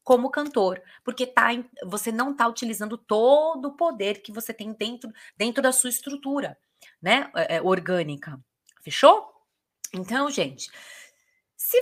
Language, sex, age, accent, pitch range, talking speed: Portuguese, female, 20-39, Brazilian, 185-265 Hz, 135 wpm